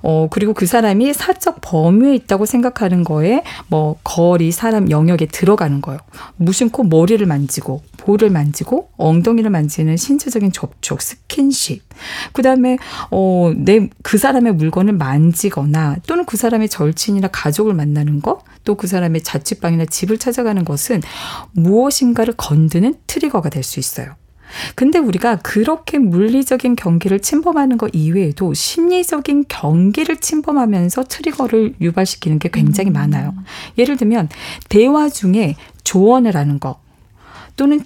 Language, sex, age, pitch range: Korean, female, 40-59, 165-255 Hz